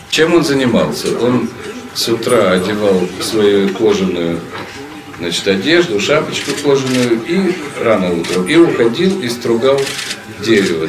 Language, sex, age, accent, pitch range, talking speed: Russian, male, 50-69, native, 110-135 Hz, 115 wpm